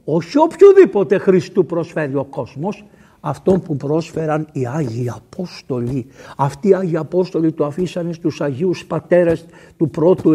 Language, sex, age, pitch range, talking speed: Greek, male, 60-79, 160-220 Hz, 135 wpm